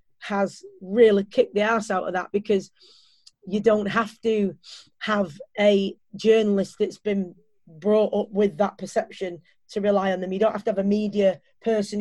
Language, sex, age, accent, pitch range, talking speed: English, female, 30-49, British, 195-220 Hz, 175 wpm